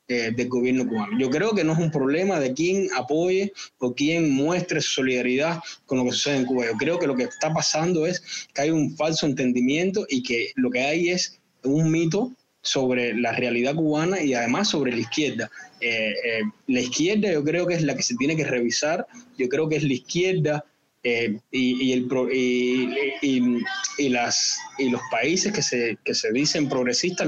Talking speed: 180 wpm